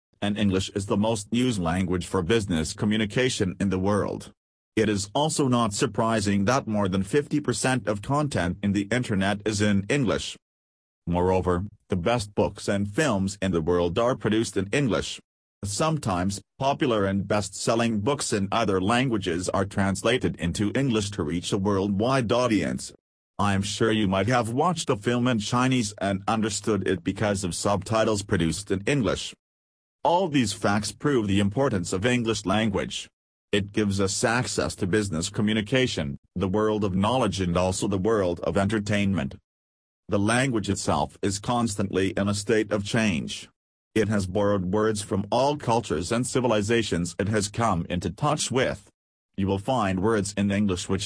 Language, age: English, 40-59